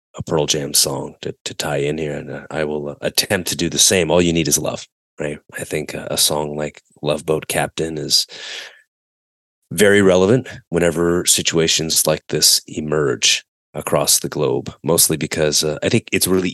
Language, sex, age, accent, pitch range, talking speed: English, male, 30-49, American, 75-85 Hz, 190 wpm